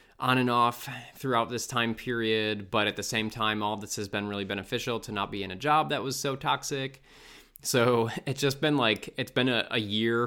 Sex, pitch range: male, 105-130 Hz